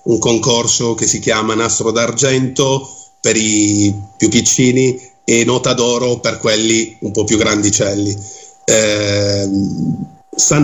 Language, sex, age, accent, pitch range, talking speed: Italian, male, 40-59, native, 105-135 Hz, 125 wpm